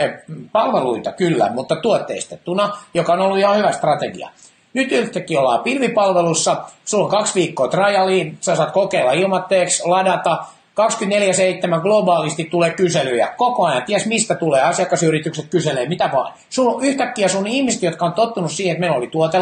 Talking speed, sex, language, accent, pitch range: 150 wpm, male, Finnish, native, 175-220 Hz